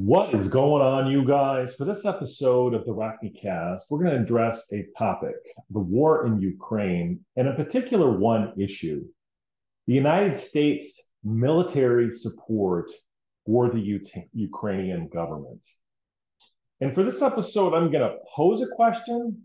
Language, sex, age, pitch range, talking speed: English, male, 40-59, 110-145 Hz, 140 wpm